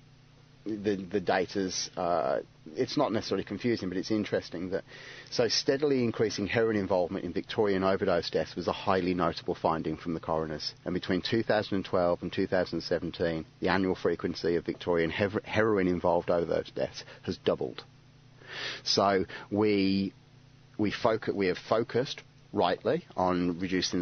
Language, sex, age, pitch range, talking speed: English, male, 30-49, 90-105 Hz, 155 wpm